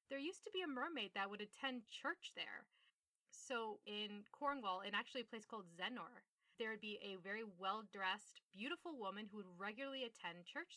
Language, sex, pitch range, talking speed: English, female, 190-240 Hz, 190 wpm